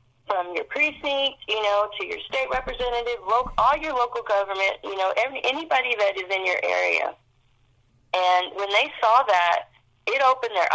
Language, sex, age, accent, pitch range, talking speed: English, female, 40-59, American, 180-245 Hz, 175 wpm